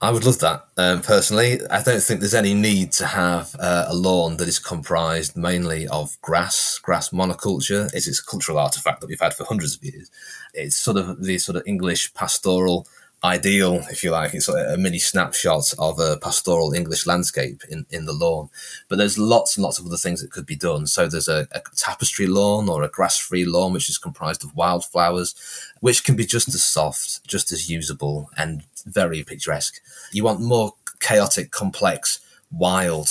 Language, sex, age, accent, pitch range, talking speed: English, male, 30-49, British, 80-100 Hz, 195 wpm